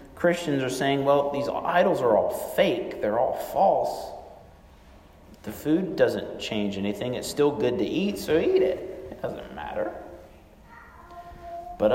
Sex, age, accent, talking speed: male, 40-59, American, 145 wpm